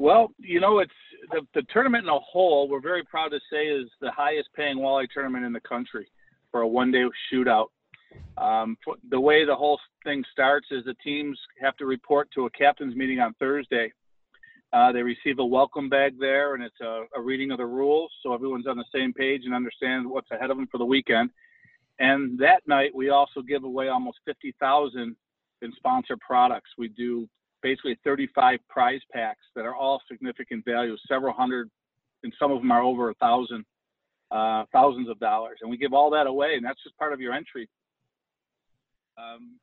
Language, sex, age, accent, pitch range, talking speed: English, male, 50-69, American, 125-145 Hz, 195 wpm